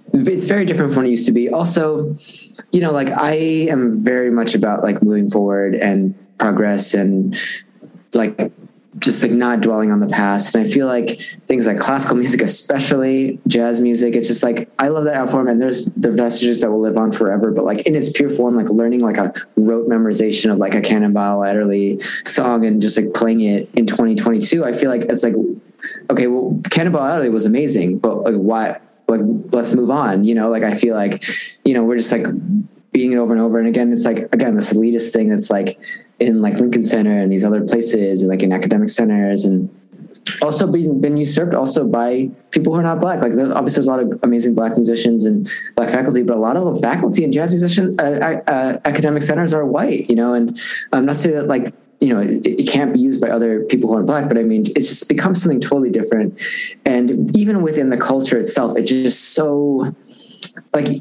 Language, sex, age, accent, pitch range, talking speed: English, male, 20-39, American, 110-155 Hz, 215 wpm